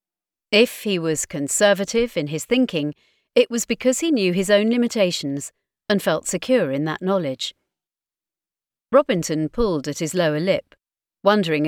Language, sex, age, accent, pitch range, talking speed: English, female, 40-59, British, 160-225 Hz, 145 wpm